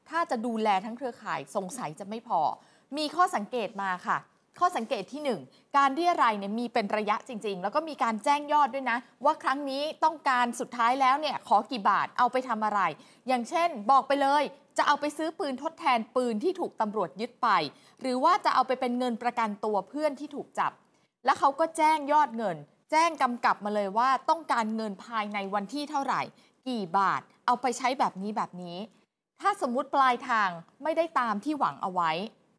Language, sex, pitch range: Thai, female, 210-285 Hz